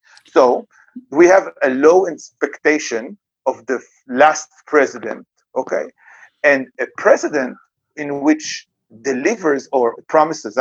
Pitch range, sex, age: 135-190 Hz, male, 50-69